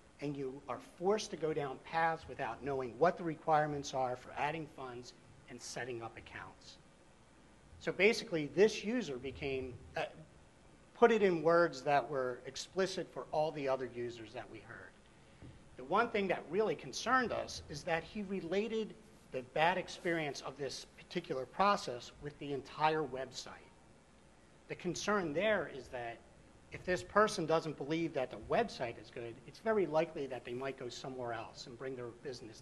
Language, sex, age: English, male, 50-69